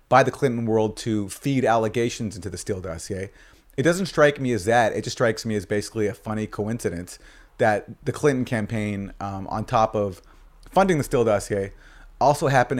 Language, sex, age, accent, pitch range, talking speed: English, male, 30-49, American, 105-125 Hz, 190 wpm